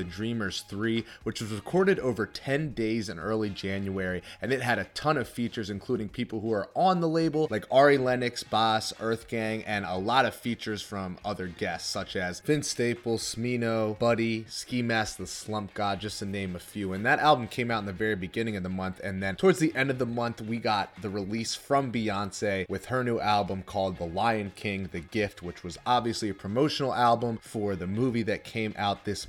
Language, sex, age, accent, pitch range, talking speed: English, male, 30-49, American, 95-120 Hz, 215 wpm